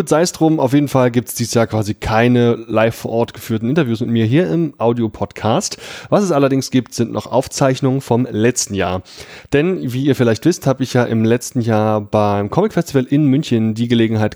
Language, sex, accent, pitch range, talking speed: German, male, German, 115-135 Hz, 205 wpm